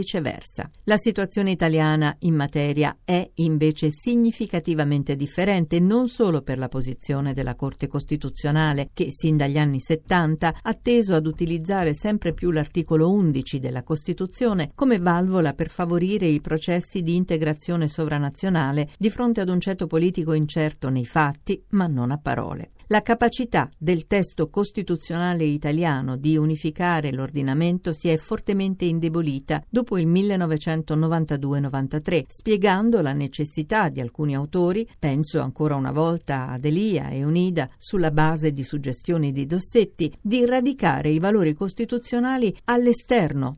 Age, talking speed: 50-69, 130 wpm